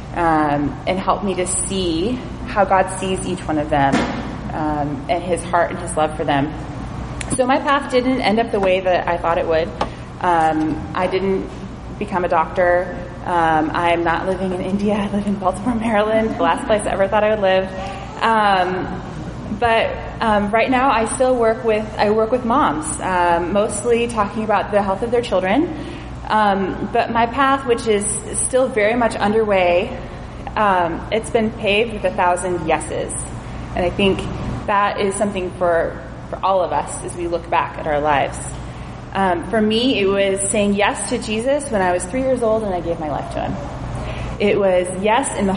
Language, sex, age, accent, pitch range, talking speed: English, female, 20-39, American, 170-215 Hz, 190 wpm